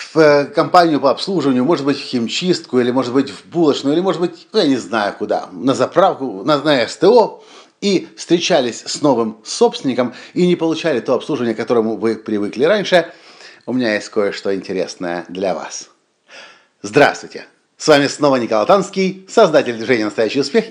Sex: male